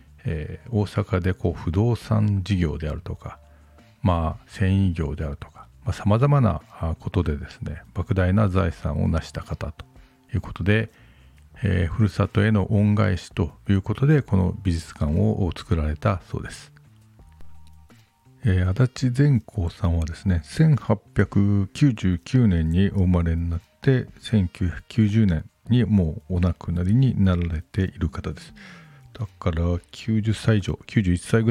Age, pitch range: 50-69, 85-110 Hz